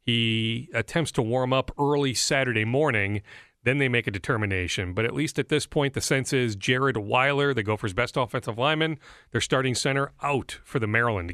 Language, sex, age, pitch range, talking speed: English, male, 40-59, 115-145 Hz, 190 wpm